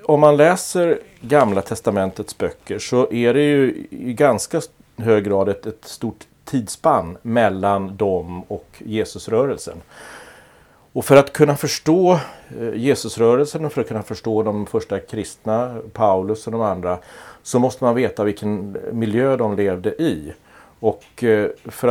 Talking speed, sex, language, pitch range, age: 135 wpm, male, Swedish, 105-130 Hz, 40-59